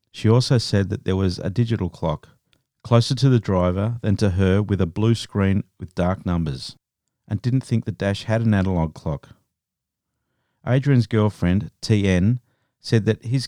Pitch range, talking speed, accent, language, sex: 95-115 Hz, 170 wpm, Australian, English, male